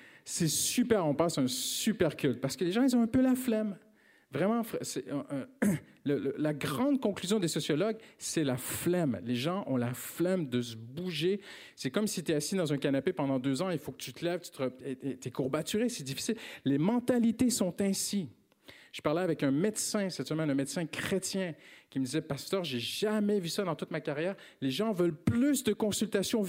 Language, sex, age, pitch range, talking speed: French, male, 50-69, 155-235 Hz, 215 wpm